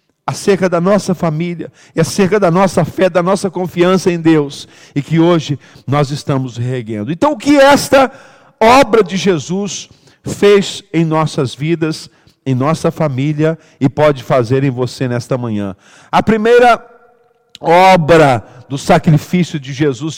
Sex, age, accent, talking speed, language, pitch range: male, 50-69, Brazilian, 145 wpm, Portuguese, 160-235 Hz